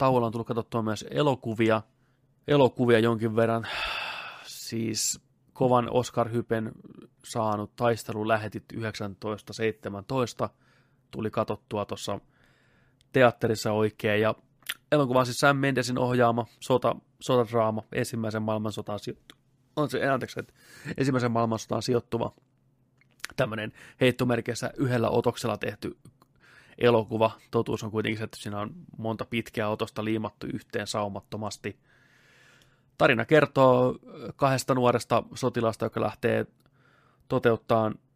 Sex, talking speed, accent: male, 100 wpm, native